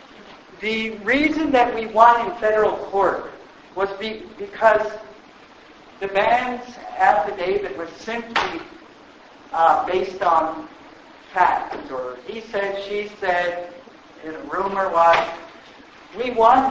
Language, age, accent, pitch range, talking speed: English, 60-79, American, 180-265 Hz, 110 wpm